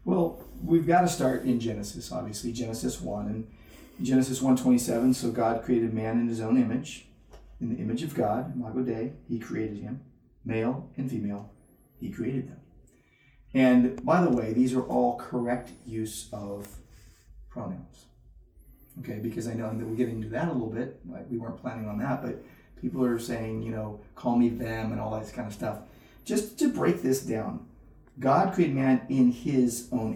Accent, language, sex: American, English, male